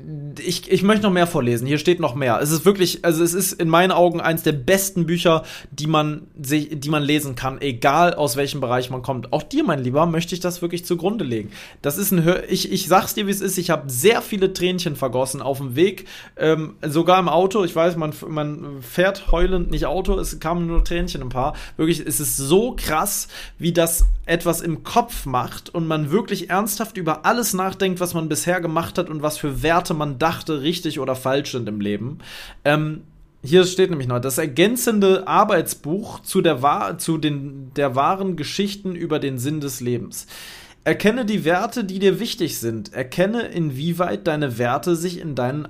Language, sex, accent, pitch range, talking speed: German, male, German, 145-185 Hz, 200 wpm